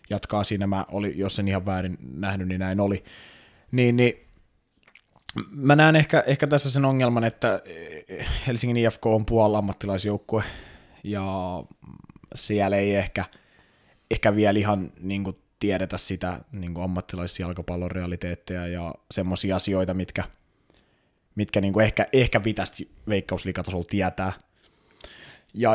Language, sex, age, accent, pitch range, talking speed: Finnish, male, 20-39, native, 95-115 Hz, 120 wpm